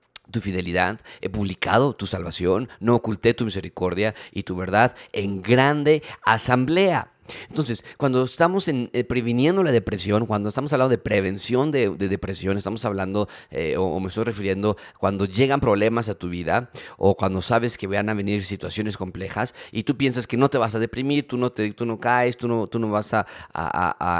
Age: 30-49